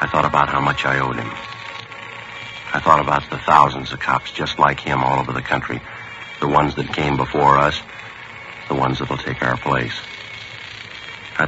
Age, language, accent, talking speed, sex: 60-79, English, American, 190 wpm, male